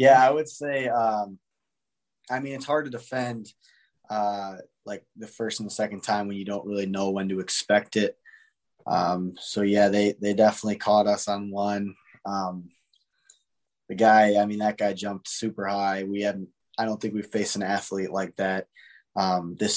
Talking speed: 185 wpm